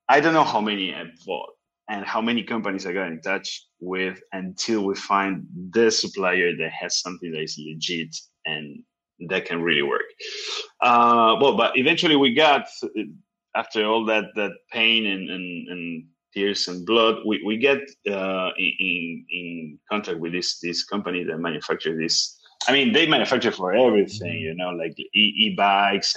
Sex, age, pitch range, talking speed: male, 30-49, 95-140 Hz, 170 wpm